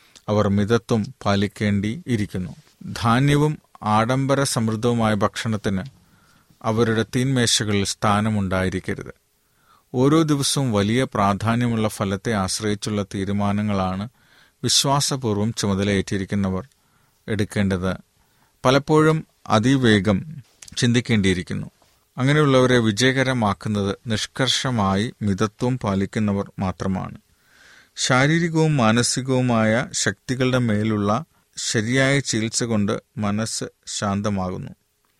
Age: 40-59